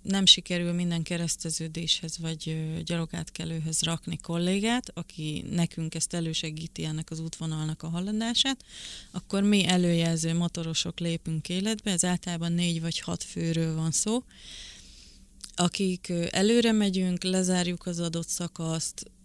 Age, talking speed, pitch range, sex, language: 30-49, 120 wpm, 165-180 Hz, female, Hungarian